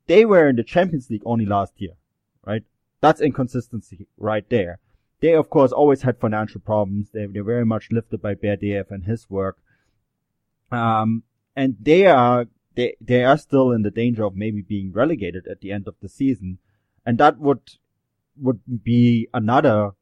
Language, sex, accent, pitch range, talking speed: English, male, German, 110-135 Hz, 175 wpm